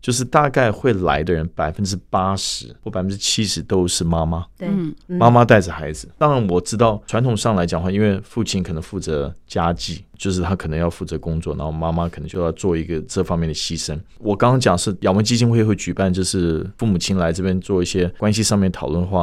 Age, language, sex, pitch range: 20-39, Chinese, male, 85-105 Hz